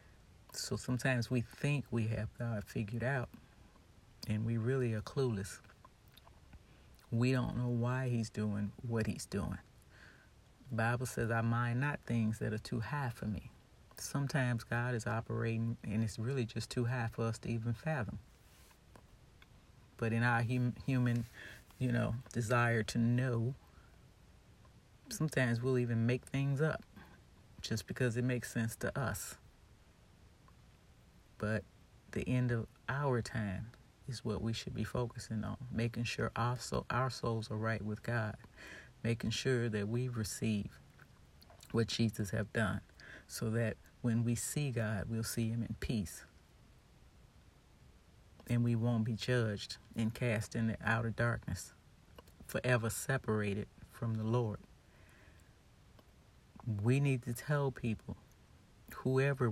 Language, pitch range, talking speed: English, 110-125 Hz, 140 wpm